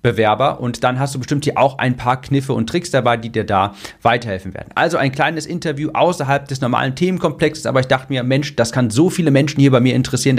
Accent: German